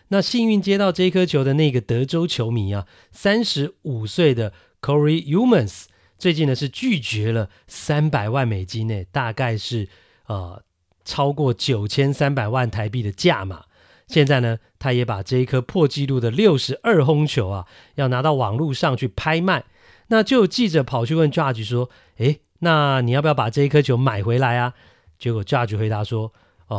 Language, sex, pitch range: Chinese, male, 115-155 Hz